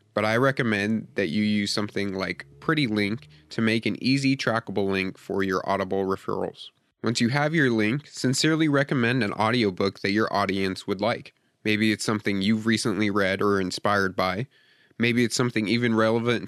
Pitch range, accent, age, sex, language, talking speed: 100-125 Hz, American, 30-49, male, English, 175 wpm